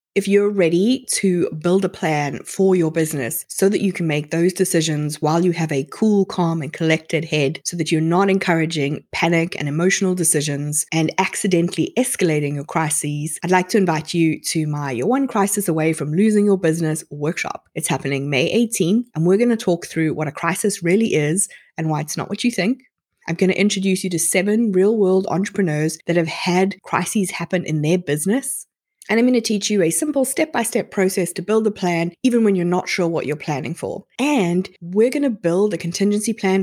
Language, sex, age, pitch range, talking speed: English, female, 20-39, 160-205 Hz, 205 wpm